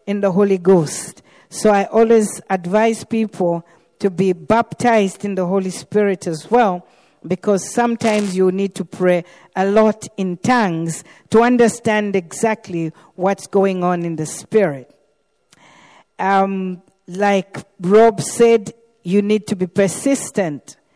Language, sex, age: English, female, 50-69